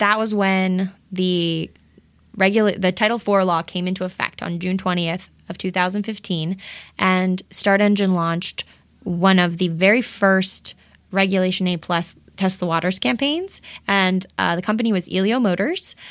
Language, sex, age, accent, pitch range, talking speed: English, female, 20-39, American, 180-210 Hz, 155 wpm